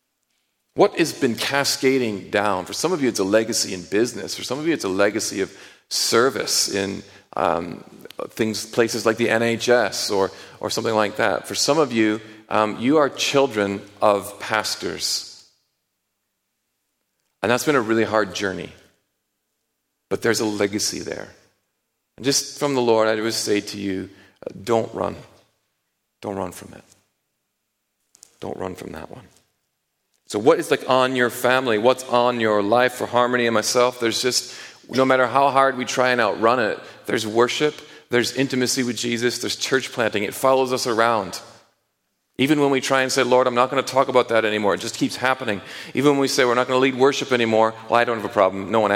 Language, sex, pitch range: English, male, 110-135 Hz